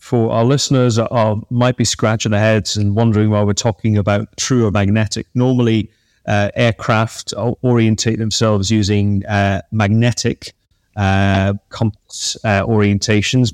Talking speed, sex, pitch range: 135 wpm, male, 100-130 Hz